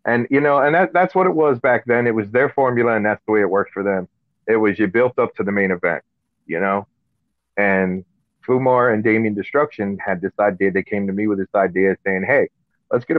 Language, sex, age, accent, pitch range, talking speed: English, male, 30-49, American, 95-120 Hz, 240 wpm